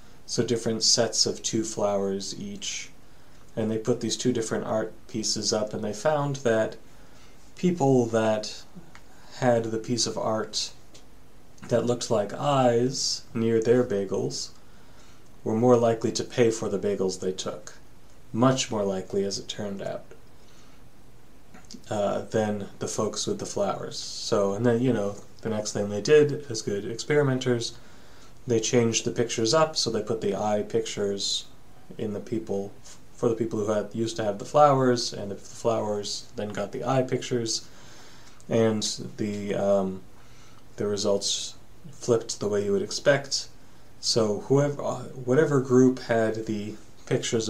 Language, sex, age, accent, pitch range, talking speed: English, male, 30-49, American, 105-125 Hz, 155 wpm